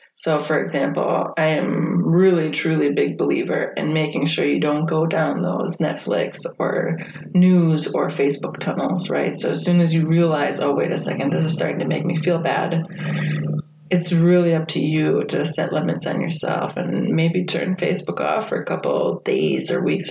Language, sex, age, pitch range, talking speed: English, female, 20-39, 160-185 Hz, 190 wpm